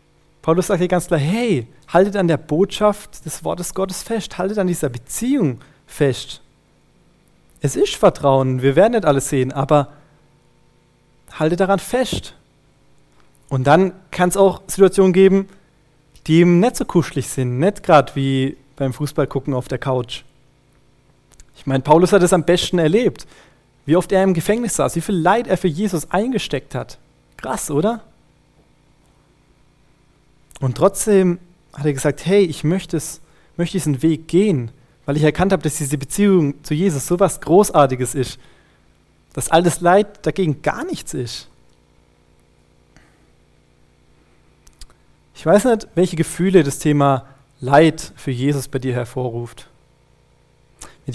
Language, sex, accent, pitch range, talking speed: German, male, German, 135-185 Hz, 145 wpm